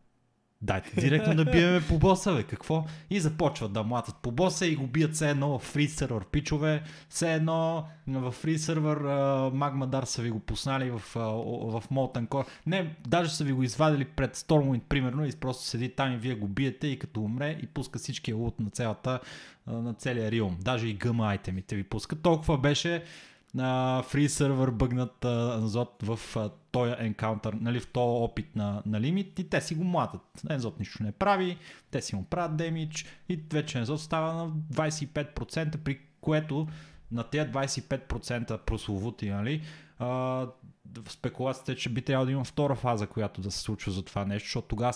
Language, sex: Bulgarian, male